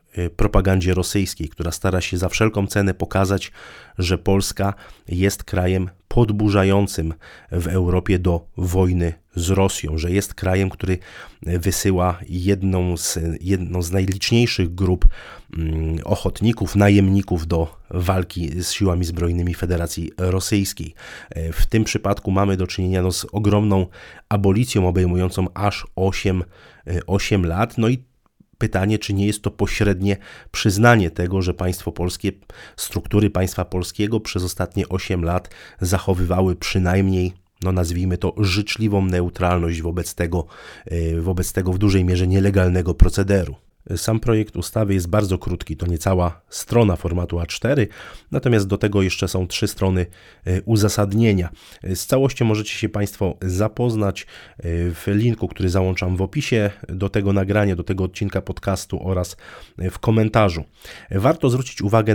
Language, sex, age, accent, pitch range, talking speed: Polish, male, 30-49, native, 90-105 Hz, 130 wpm